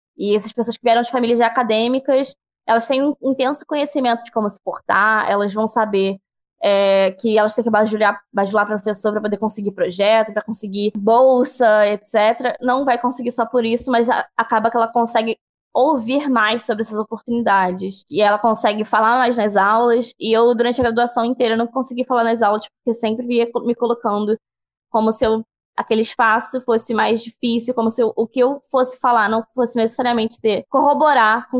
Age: 10-29